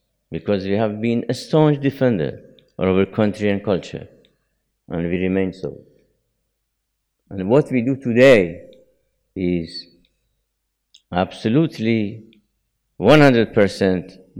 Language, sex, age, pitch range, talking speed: English, male, 50-69, 105-135 Hz, 100 wpm